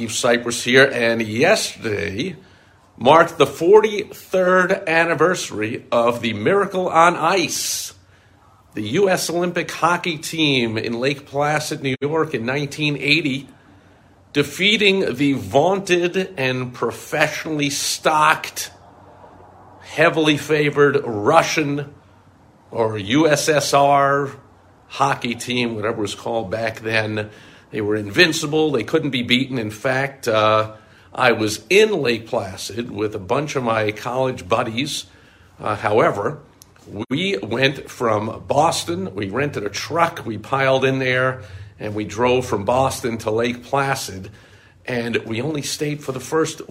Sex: male